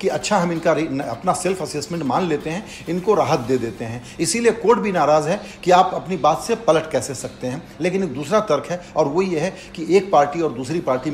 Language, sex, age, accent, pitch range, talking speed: Hindi, male, 50-69, native, 140-185 Hz, 235 wpm